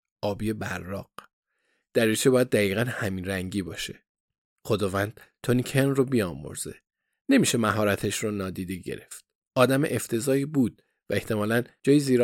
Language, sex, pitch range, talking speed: Persian, male, 100-130 Hz, 120 wpm